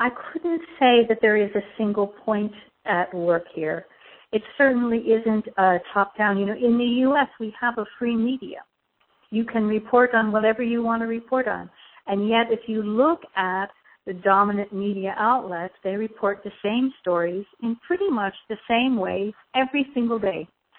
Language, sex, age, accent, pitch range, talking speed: English, female, 50-69, American, 190-240 Hz, 180 wpm